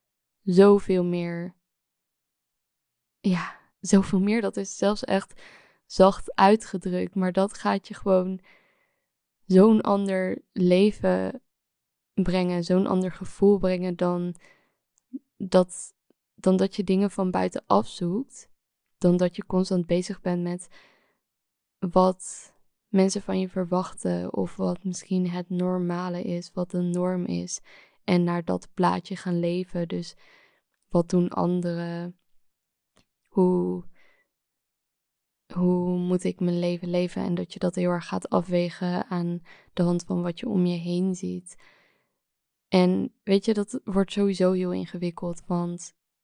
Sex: female